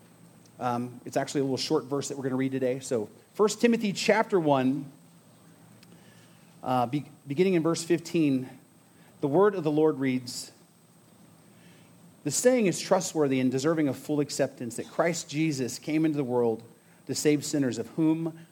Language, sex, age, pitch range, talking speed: English, male, 40-59, 140-190 Hz, 160 wpm